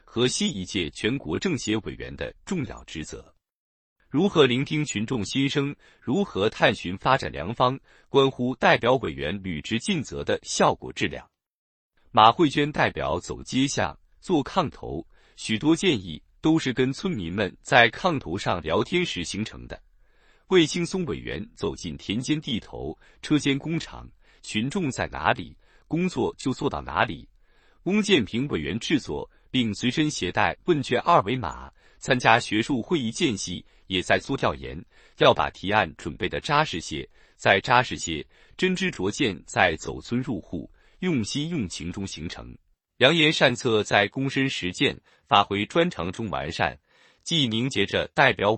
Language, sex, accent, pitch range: Chinese, male, native, 95-150 Hz